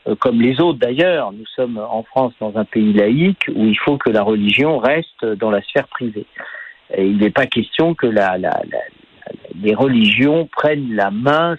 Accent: French